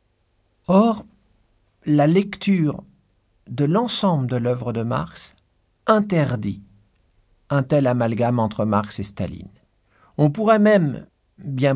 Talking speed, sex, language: 105 wpm, male, French